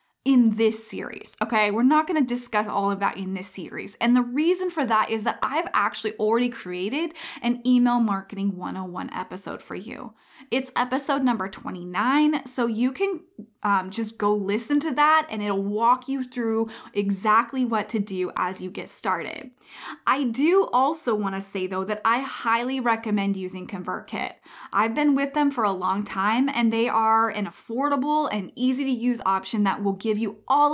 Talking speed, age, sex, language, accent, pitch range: 180 wpm, 20-39, female, English, American, 200-265 Hz